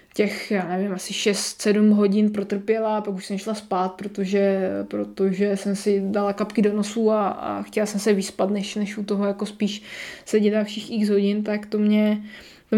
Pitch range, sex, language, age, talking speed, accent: 200-220 Hz, female, Czech, 20-39, 195 wpm, native